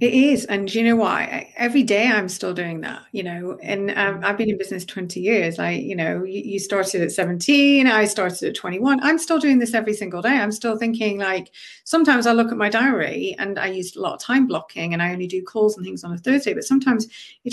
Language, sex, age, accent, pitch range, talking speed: English, female, 30-49, British, 185-235 Hz, 245 wpm